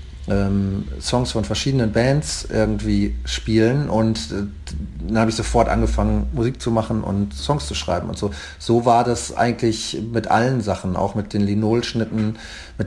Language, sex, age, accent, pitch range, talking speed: German, male, 40-59, German, 105-135 Hz, 155 wpm